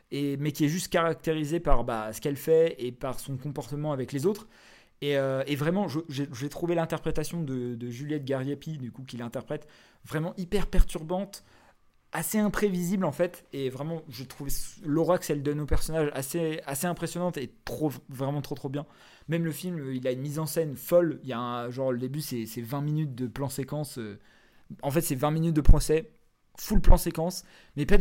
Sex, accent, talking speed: male, French, 200 wpm